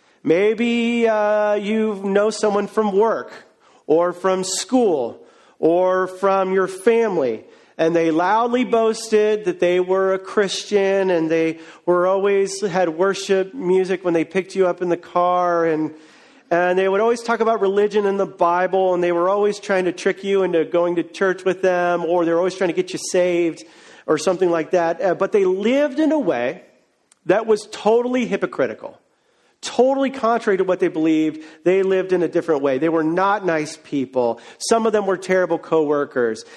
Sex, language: male, English